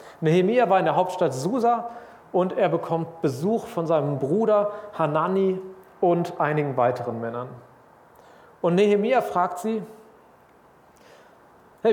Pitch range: 155-195 Hz